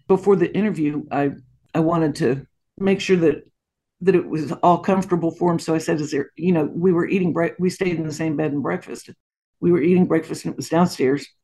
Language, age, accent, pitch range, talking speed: English, 60-79, American, 160-195 Hz, 230 wpm